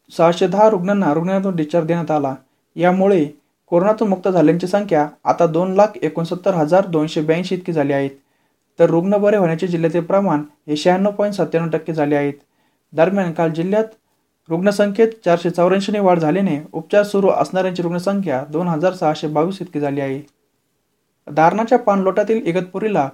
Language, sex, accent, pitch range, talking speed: Marathi, male, native, 155-195 Hz, 120 wpm